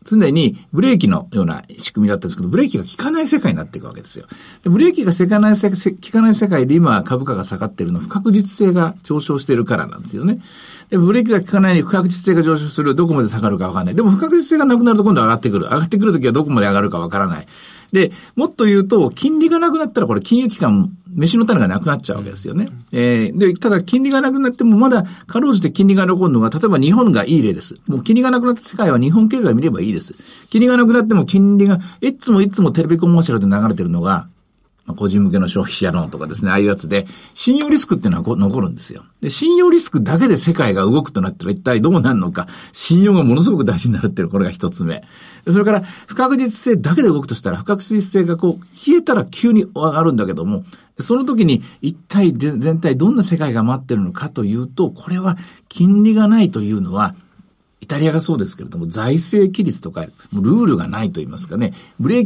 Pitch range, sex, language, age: 155-220 Hz, male, Japanese, 50-69